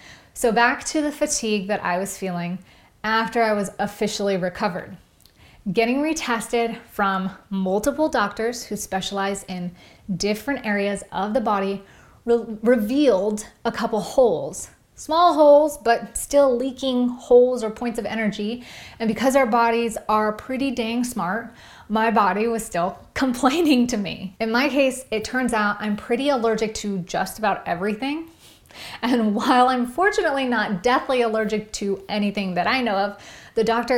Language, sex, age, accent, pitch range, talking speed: English, female, 30-49, American, 200-250 Hz, 150 wpm